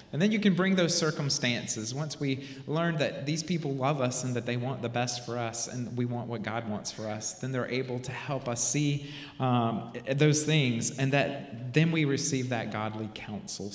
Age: 30-49